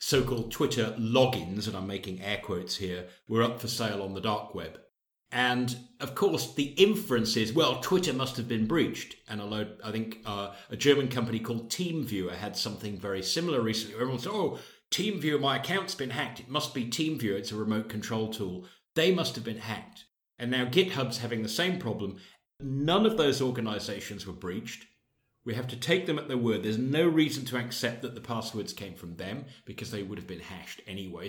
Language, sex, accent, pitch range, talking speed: English, male, British, 105-125 Hz, 200 wpm